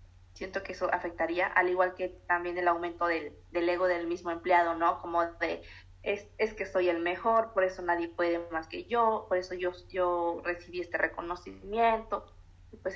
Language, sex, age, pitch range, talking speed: English, female, 20-39, 170-195 Hz, 190 wpm